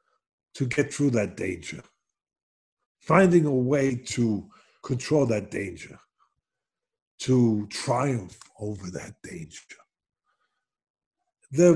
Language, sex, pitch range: English, male, 125-185 Hz